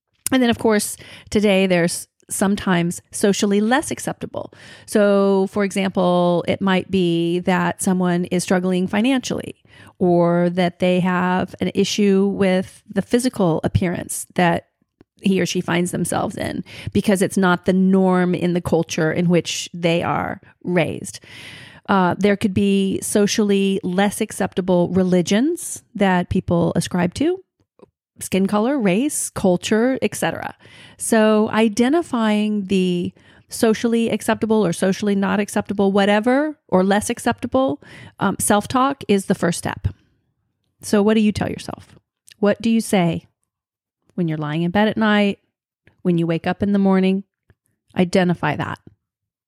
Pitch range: 175-210 Hz